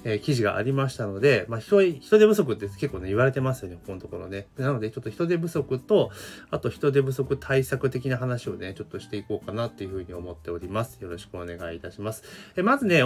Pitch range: 100-145 Hz